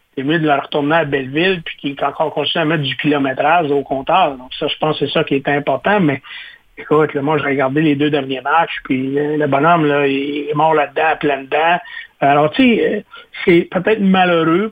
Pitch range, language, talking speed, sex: 145-175 Hz, French, 230 wpm, male